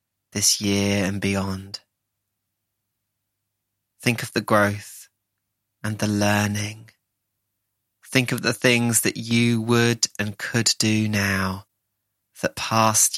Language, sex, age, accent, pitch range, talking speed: English, male, 30-49, British, 100-110 Hz, 110 wpm